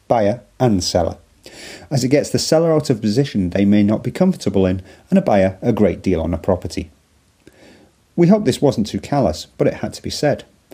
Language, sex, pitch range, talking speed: English, male, 95-125 Hz, 210 wpm